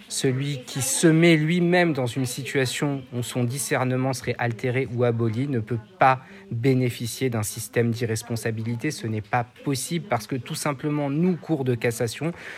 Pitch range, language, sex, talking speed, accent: 125-165 Hz, Italian, male, 160 wpm, French